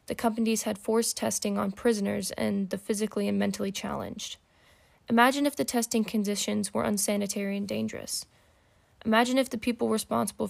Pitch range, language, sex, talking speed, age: 200-230 Hz, English, female, 155 wpm, 20-39